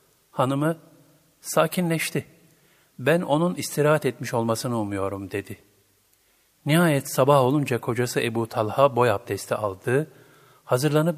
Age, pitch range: 50-69, 110-145 Hz